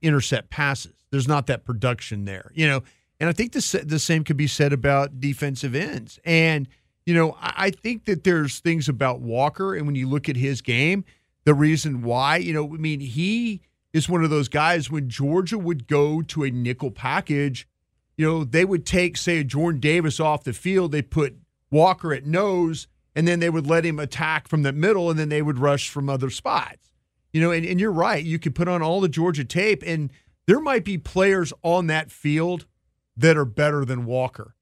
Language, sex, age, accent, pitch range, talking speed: English, male, 40-59, American, 135-170 Hz, 210 wpm